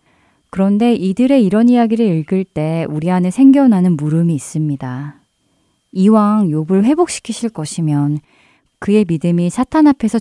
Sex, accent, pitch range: female, native, 160-225 Hz